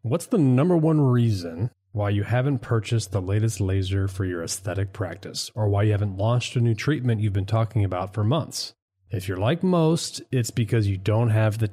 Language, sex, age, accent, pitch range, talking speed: English, male, 30-49, American, 100-130 Hz, 205 wpm